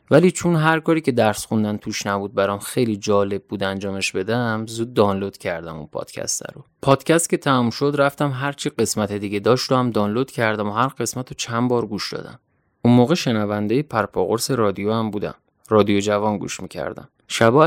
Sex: male